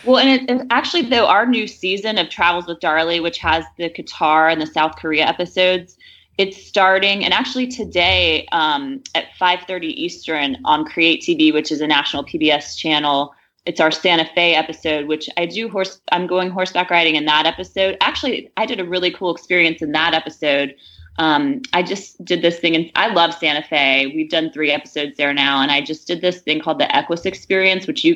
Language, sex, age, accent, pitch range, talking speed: English, female, 20-39, American, 160-205 Hz, 200 wpm